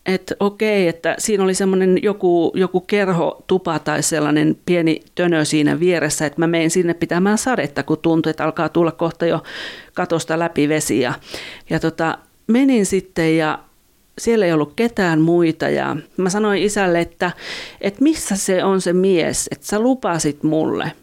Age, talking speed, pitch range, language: 40-59, 160 wpm, 160-200 Hz, Finnish